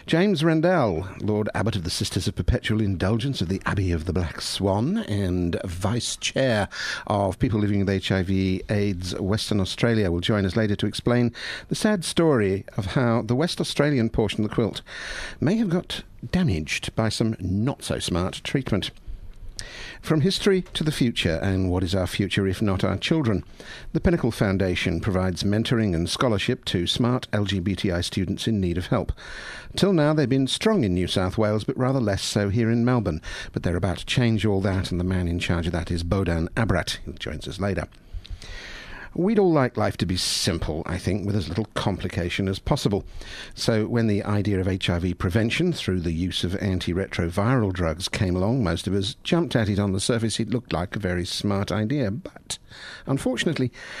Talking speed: 185 wpm